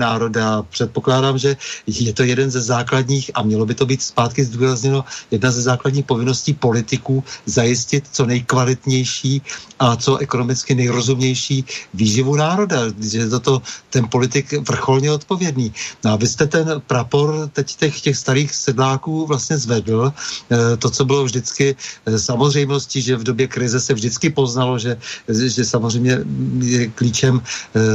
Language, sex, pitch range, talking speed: Czech, male, 120-135 Hz, 140 wpm